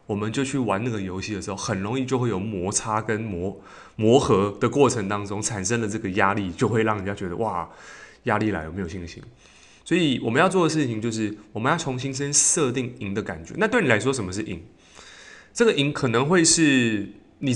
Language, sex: Chinese, male